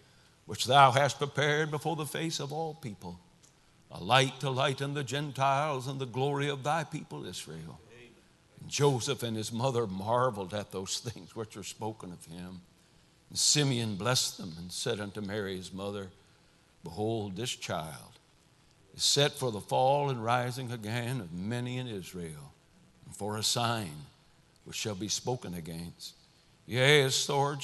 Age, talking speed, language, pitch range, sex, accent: 60-79, 160 wpm, English, 105-135 Hz, male, American